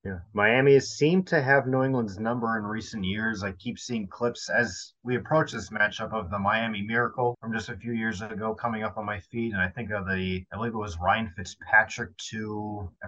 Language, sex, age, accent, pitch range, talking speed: English, male, 30-49, American, 105-125 Hz, 225 wpm